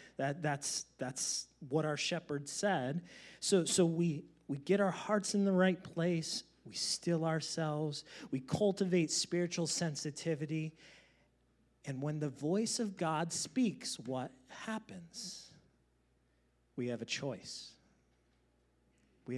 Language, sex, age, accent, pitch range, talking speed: English, male, 30-49, American, 145-210 Hz, 120 wpm